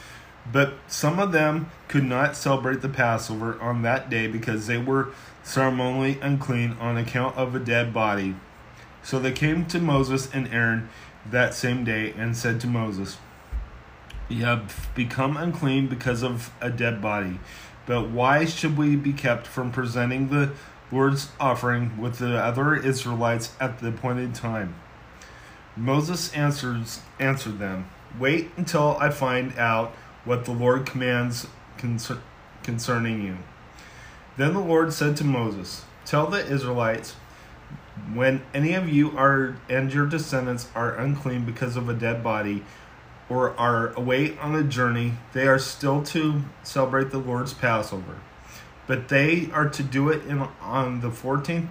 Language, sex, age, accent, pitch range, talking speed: English, male, 30-49, American, 115-140 Hz, 145 wpm